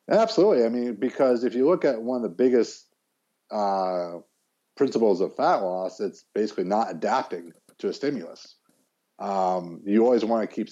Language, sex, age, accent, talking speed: English, male, 50-69, American, 170 wpm